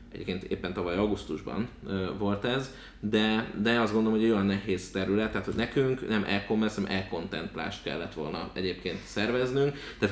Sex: male